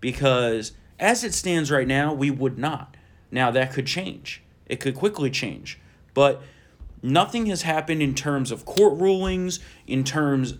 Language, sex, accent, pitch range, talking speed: English, male, American, 120-155 Hz, 160 wpm